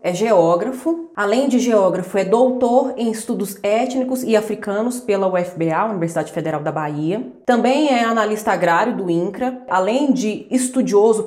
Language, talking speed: Portuguese, 145 wpm